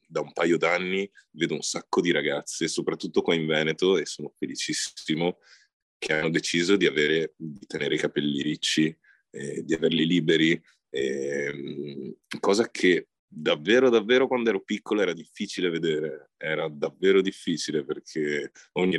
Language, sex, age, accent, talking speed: Italian, male, 30-49, native, 145 wpm